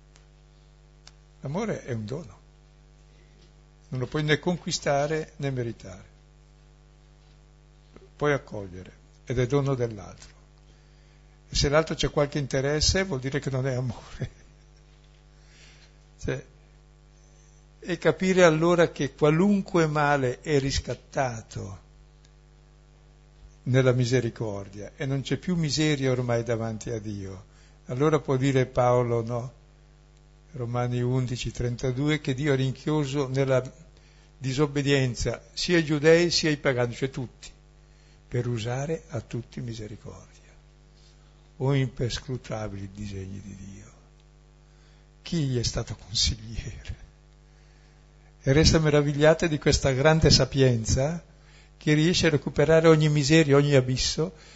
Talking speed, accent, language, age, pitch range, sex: 110 wpm, native, Italian, 60-79, 125-150 Hz, male